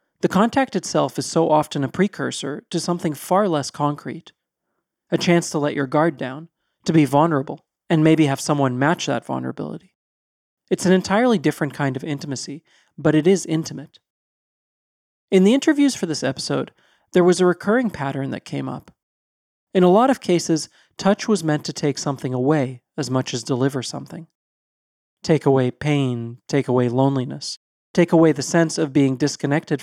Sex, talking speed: male, 170 wpm